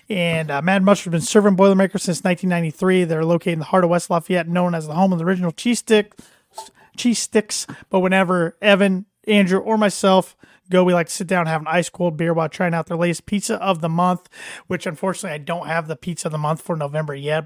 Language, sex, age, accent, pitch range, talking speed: English, male, 30-49, American, 165-195 Hz, 235 wpm